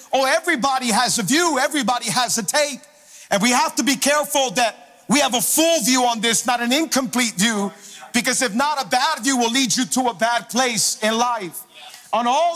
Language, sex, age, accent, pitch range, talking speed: English, male, 50-69, American, 215-275 Hz, 210 wpm